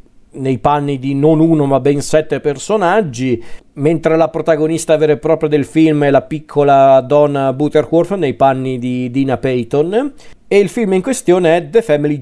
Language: Italian